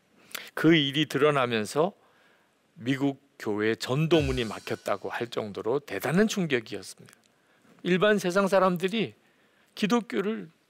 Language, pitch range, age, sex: Korean, 120-195 Hz, 50-69, male